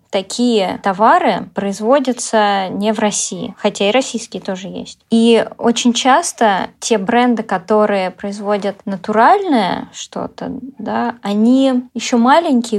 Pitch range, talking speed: 195-235 Hz, 115 wpm